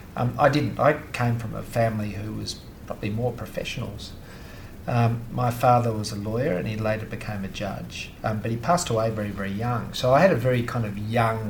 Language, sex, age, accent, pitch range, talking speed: English, male, 40-59, Australian, 105-130 Hz, 215 wpm